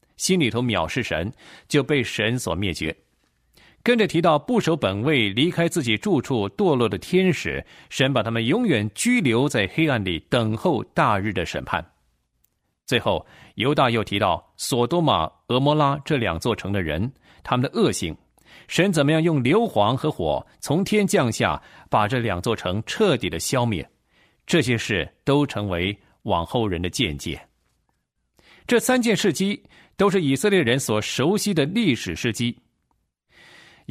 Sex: male